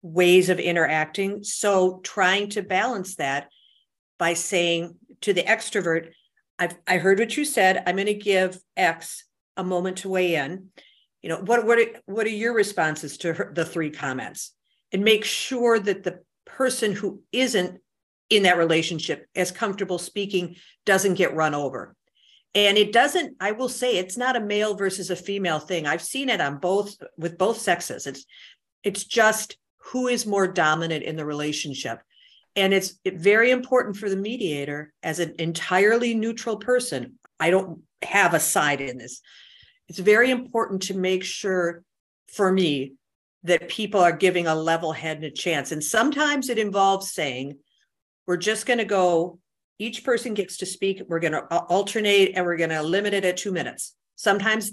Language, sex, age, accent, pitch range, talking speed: English, female, 50-69, American, 170-215 Hz, 170 wpm